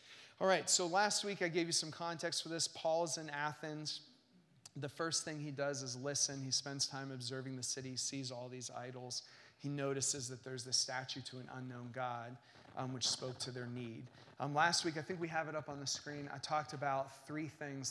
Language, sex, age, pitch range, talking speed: English, male, 30-49, 135-165 Hz, 220 wpm